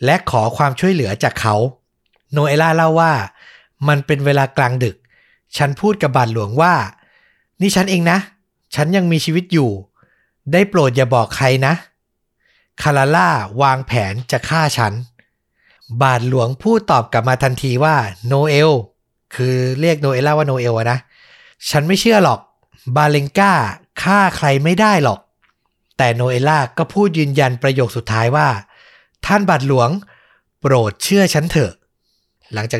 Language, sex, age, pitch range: Thai, male, 60-79, 120-155 Hz